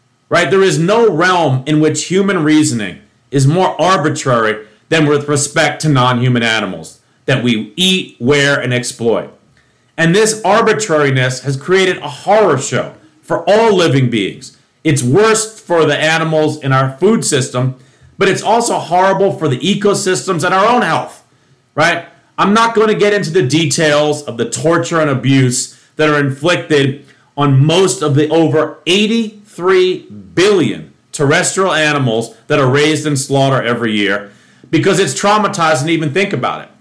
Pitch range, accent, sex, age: 140-185 Hz, American, male, 40-59